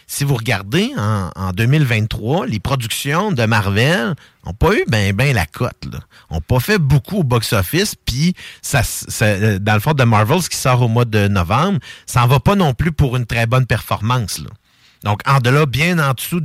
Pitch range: 115-155 Hz